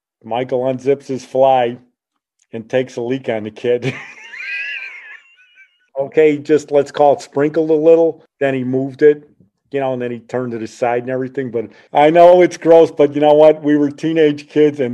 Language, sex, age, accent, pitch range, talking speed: English, male, 50-69, American, 120-150 Hz, 190 wpm